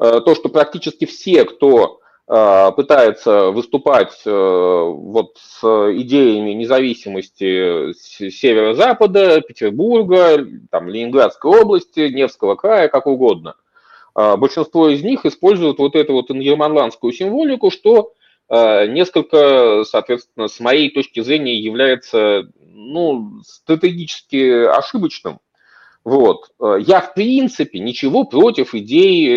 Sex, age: male, 30-49